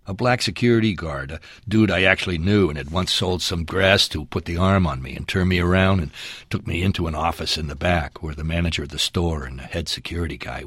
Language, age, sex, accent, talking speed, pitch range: English, 60-79, male, American, 255 wpm, 75-100 Hz